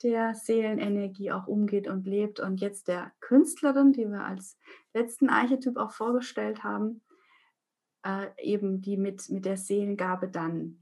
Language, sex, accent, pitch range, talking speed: German, female, German, 190-240 Hz, 145 wpm